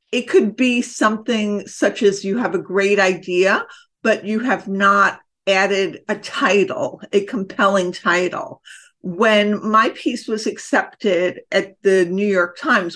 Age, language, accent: 50-69, English, American